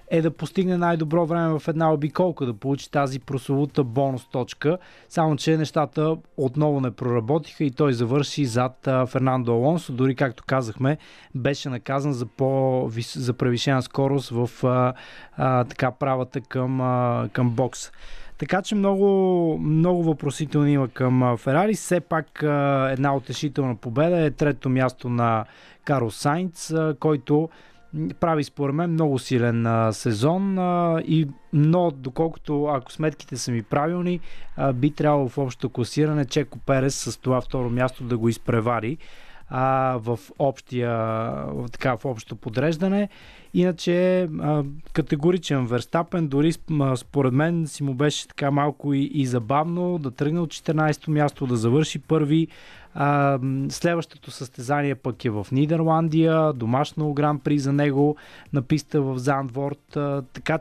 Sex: male